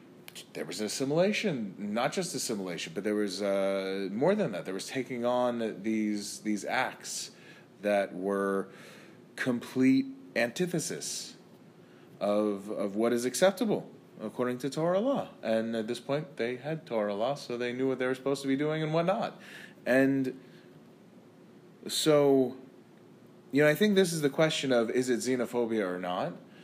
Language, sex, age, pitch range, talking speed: English, male, 30-49, 105-145 Hz, 155 wpm